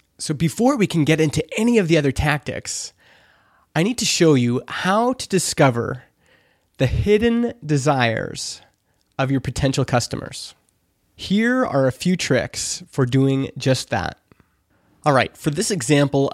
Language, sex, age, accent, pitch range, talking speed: English, male, 20-39, American, 125-155 Hz, 145 wpm